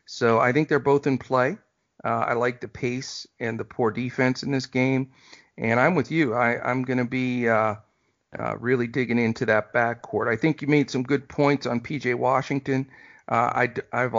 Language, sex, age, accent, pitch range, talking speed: English, male, 50-69, American, 120-140 Hz, 205 wpm